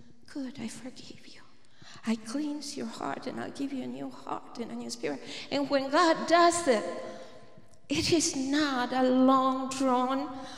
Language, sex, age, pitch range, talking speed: English, female, 40-59, 260-345 Hz, 165 wpm